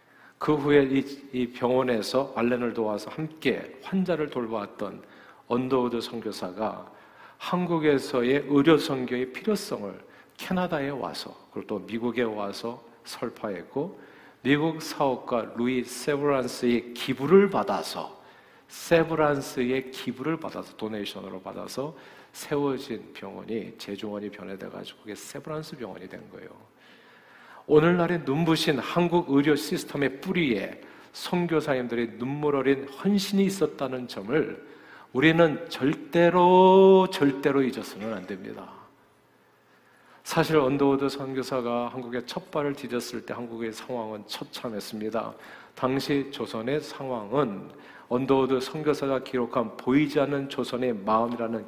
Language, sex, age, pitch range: Korean, male, 50-69, 120-150 Hz